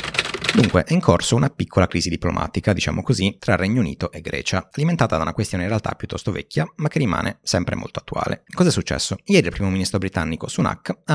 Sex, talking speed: male, 205 wpm